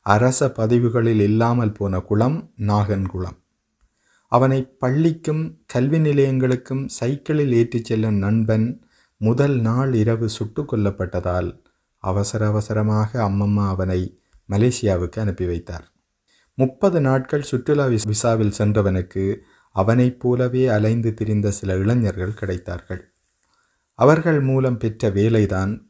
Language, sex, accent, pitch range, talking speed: Tamil, male, native, 100-125 Hz, 95 wpm